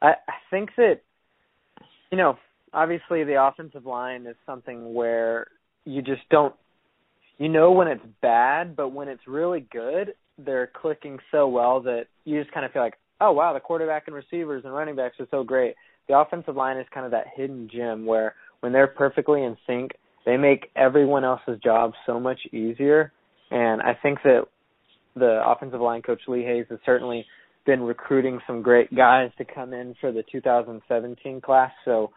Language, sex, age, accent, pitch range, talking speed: English, male, 20-39, American, 115-140 Hz, 180 wpm